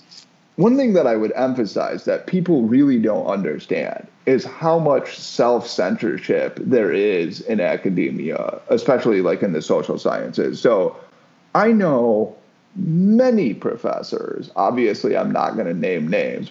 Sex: male